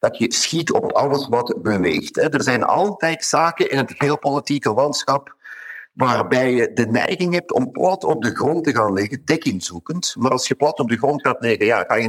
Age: 50-69